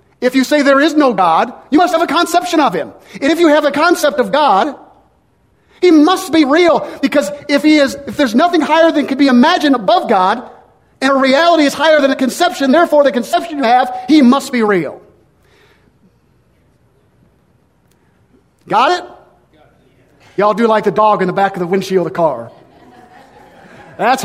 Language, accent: English, American